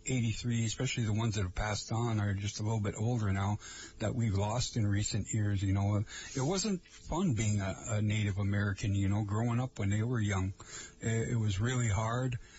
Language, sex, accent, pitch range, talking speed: English, male, American, 105-125 Hz, 210 wpm